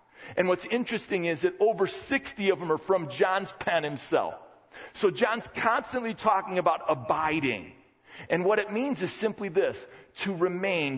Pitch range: 135-195 Hz